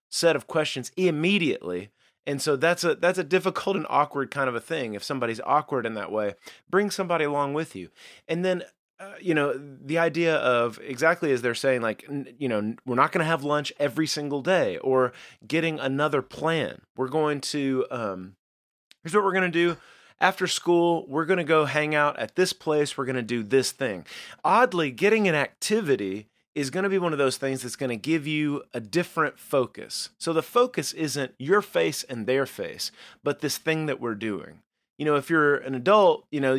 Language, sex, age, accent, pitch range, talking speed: English, male, 30-49, American, 130-170 Hz, 210 wpm